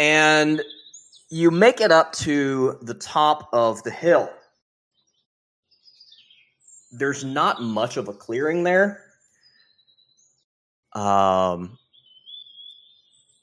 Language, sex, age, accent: English, male, 30-49, American